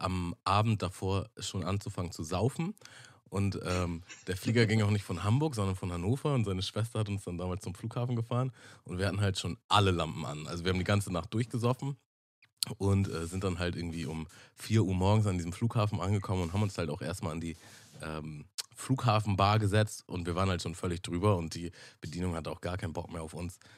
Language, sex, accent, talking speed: German, male, German, 220 wpm